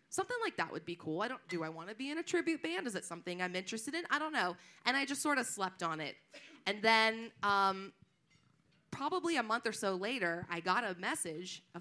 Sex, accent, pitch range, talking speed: female, American, 170-225 Hz, 245 wpm